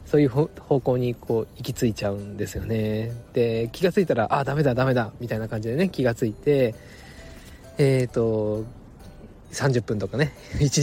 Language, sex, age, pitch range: Japanese, male, 20-39, 110-145 Hz